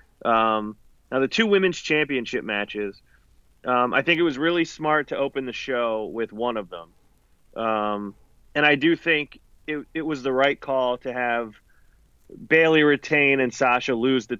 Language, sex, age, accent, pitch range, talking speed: English, male, 30-49, American, 115-145 Hz, 170 wpm